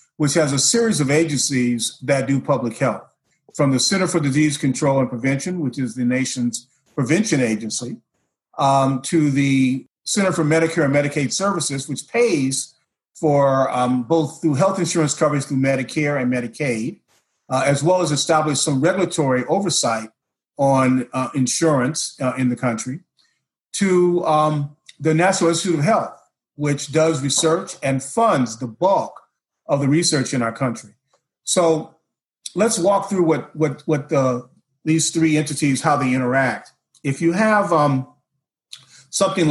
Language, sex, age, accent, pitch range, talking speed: English, male, 40-59, American, 130-160 Hz, 150 wpm